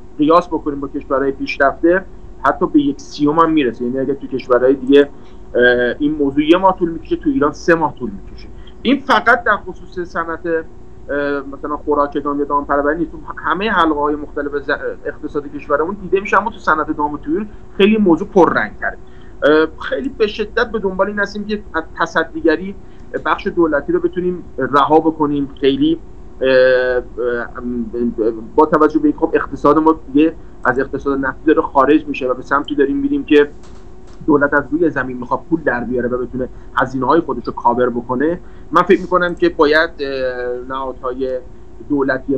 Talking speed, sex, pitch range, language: 170 wpm, male, 130-165 Hz, Persian